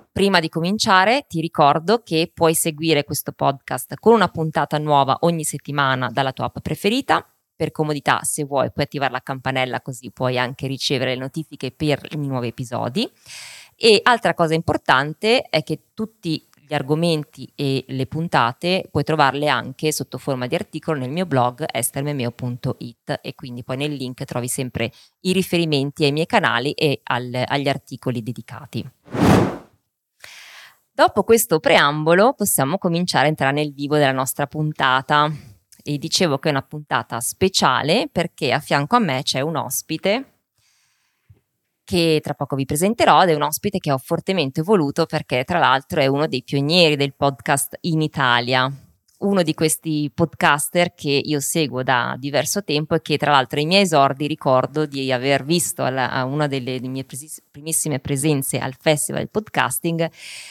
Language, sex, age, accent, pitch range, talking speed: Italian, female, 20-39, native, 135-165 Hz, 160 wpm